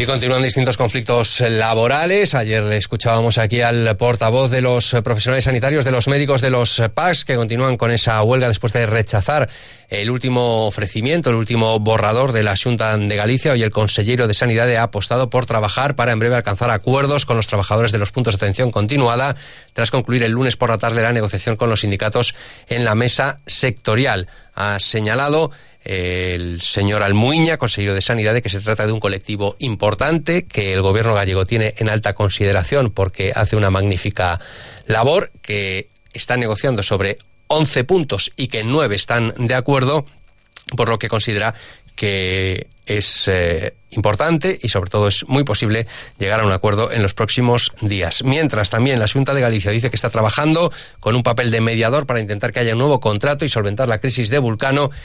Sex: male